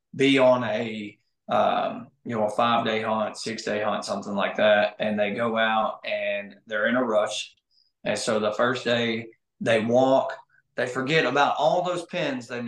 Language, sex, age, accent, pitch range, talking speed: English, male, 20-39, American, 110-135 Hz, 175 wpm